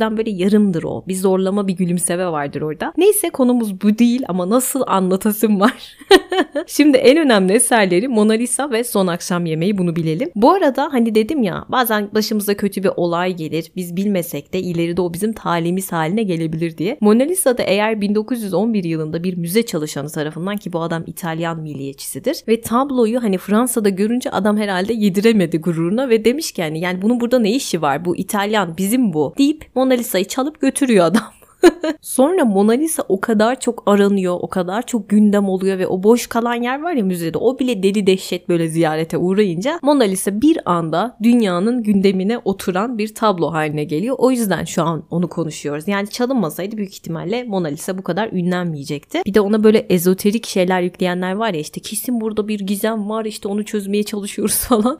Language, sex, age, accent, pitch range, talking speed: Turkish, female, 30-49, native, 180-230 Hz, 180 wpm